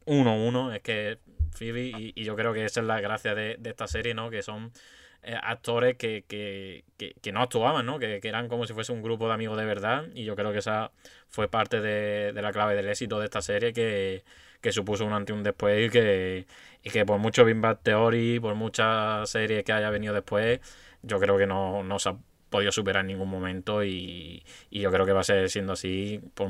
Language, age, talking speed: Spanish, 20-39, 230 wpm